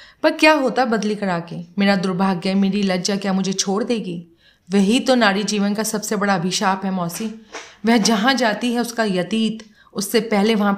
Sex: female